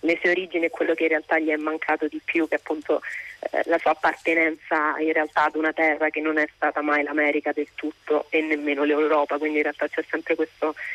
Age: 30-49